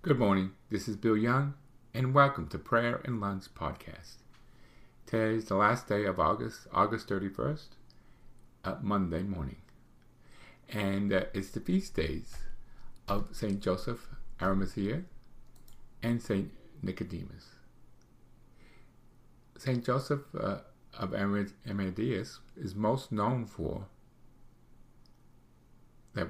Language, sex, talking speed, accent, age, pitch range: English, male, 110 wpm, American, 50-69, 95-125 Hz